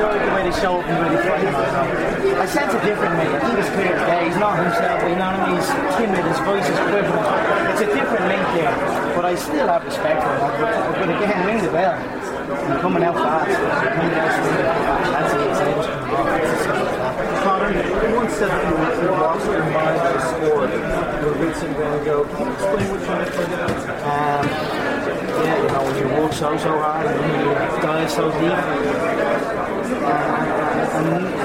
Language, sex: English, male